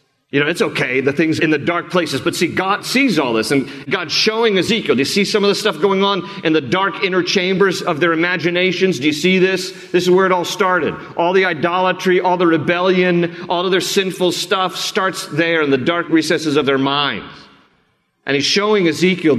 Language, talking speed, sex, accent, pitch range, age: English, 220 wpm, male, American, 155-195 Hz, 40-59